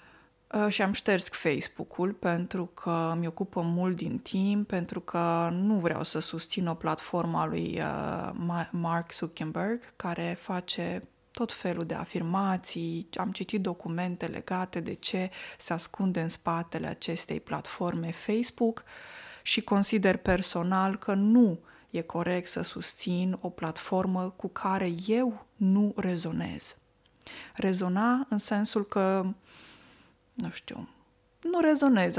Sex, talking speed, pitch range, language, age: female, 125 wpm, 175-210 Hz, Romanian, 20-39